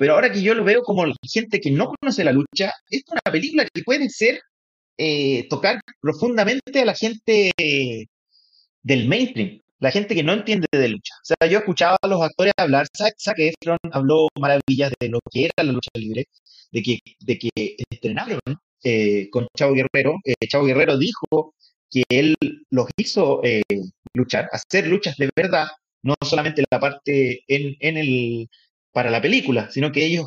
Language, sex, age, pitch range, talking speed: Spanish, male, 30-49, 130-185 Hz, 180 wpm